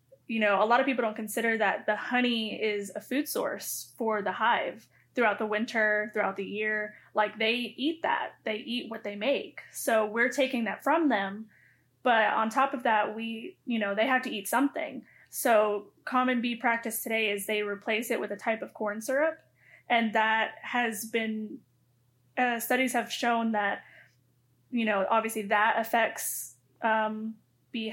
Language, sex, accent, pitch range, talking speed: English, female, American, 210-245 Hz, 180 wpm